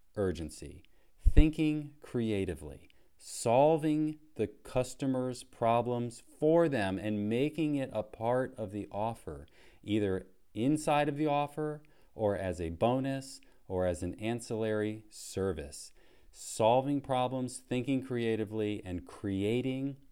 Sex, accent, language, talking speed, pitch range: male, American, English, 110 wpm, 95-130 Hz